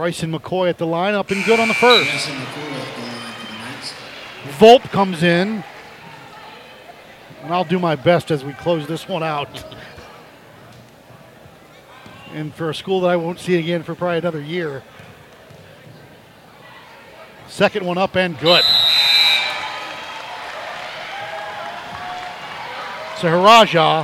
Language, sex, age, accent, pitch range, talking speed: English, male, 50-69, American, 170-230 Hz, 110 wpm